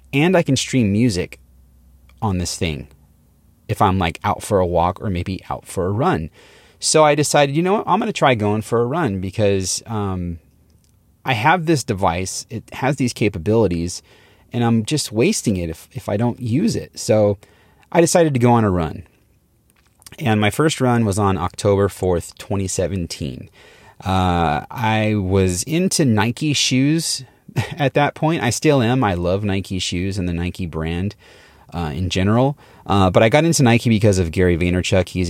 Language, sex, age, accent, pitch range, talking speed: English, male, 30-49, American, 85-120 Hz, 180 wpm